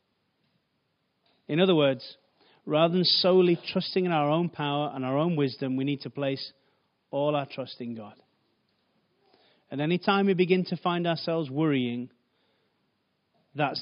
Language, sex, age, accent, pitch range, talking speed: English, male, 30-49, British, 140-190 Hz, 150 wpm